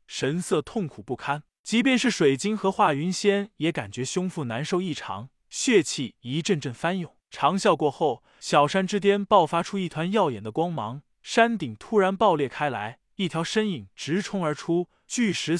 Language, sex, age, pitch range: Chinese, male, 20-39, 150-205 Hz